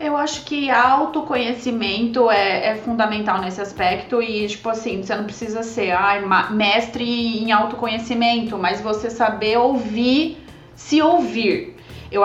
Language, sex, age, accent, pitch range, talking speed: Portuguese, female, 20-39, Brazilian, 220-280 Hz, 130 wpm